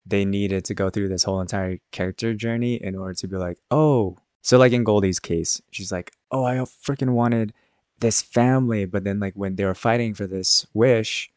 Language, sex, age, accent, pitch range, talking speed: English, male, 20-39, American, 90-110 Hz, 205 wpm